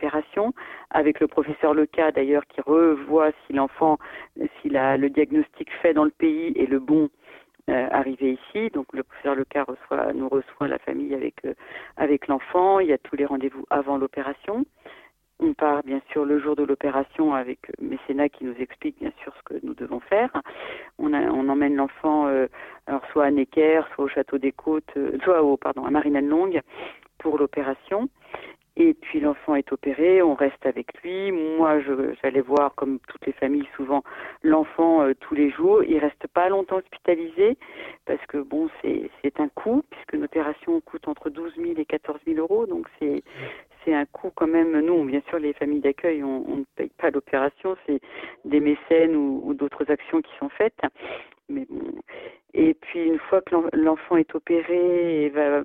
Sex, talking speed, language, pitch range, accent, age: female, 185 wpm, French, 140-190 Hz, French, 40-59